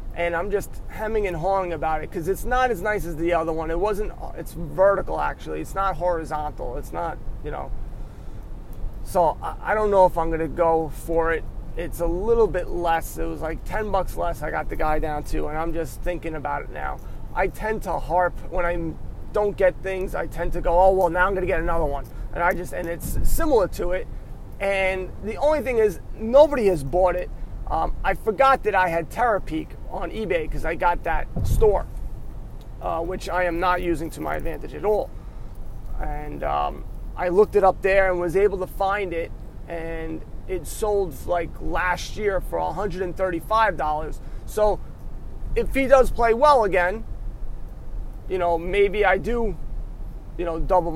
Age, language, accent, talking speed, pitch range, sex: 30-49, English, American, 195 wpm, 165-200 Hz, male